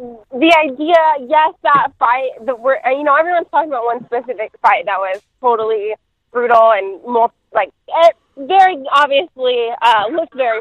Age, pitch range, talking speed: 20-39, 235-330 Hz, 160 wpm